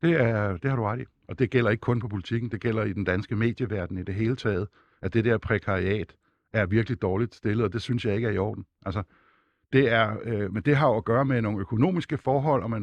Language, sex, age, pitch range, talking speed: Danish, male, 60-79, 110-135 Hz, 240 wpm